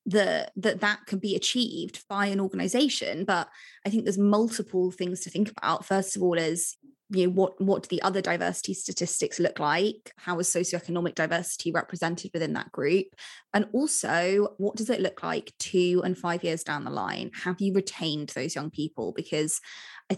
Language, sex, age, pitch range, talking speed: English, female, 20-39, 170-200 Hz, 185 wpm